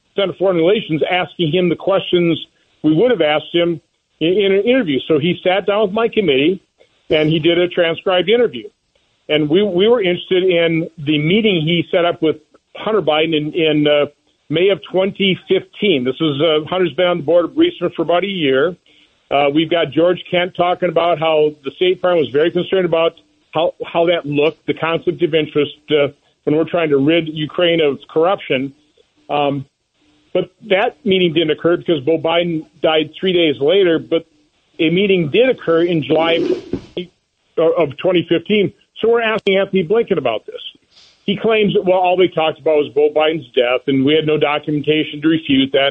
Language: English